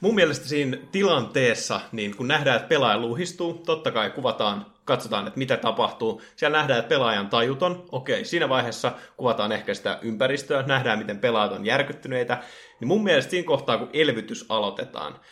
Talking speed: 160 wpm